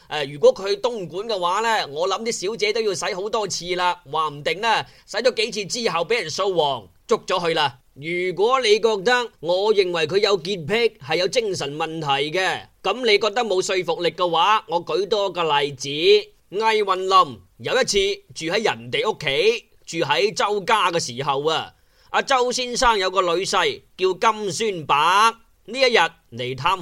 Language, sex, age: Chinese, male, 20-39